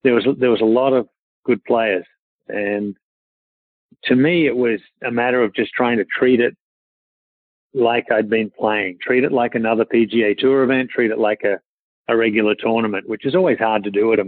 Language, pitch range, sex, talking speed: English, 105-115 Hz, male, 200 wpm